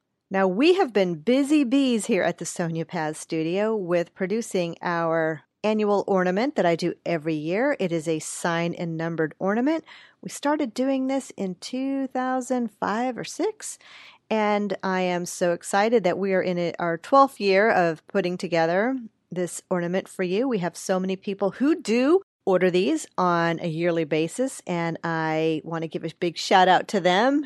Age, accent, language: 40-59, American, English